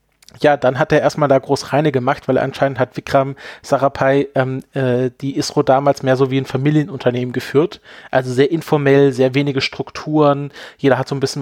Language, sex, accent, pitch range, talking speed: German, male, German, 130-145 Hz, 190 wpm